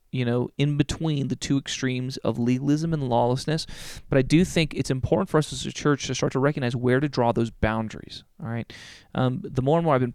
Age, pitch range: 30-49, 120-145 Hz